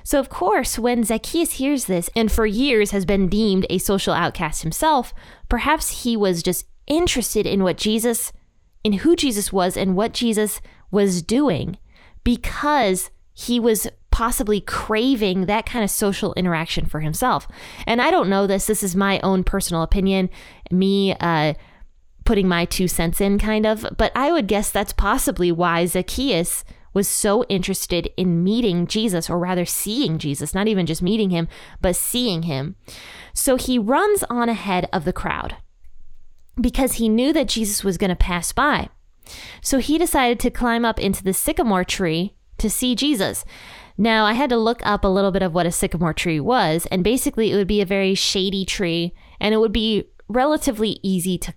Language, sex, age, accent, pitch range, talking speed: English, female, 20-39, American, 180-235 Hz, 180 wpm